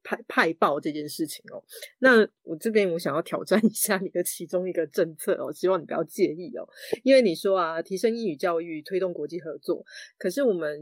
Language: Chinese